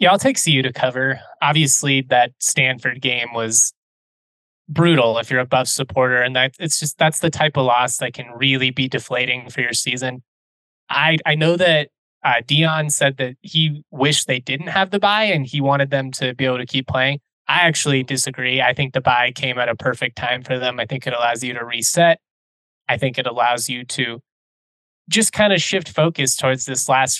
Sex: male